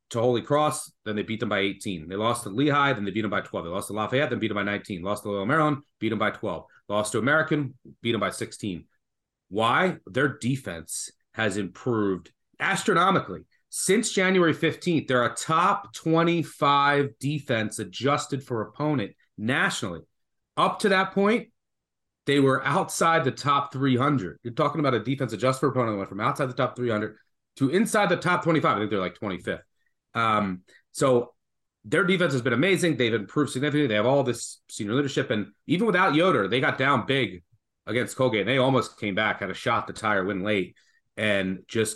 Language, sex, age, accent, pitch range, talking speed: English, male, 30-49, American, 105-150 Hz, 195 wpm